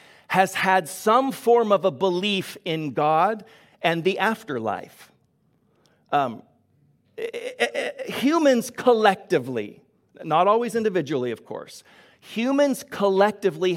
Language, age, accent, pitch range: English, 50-69, American, 175-225 Hz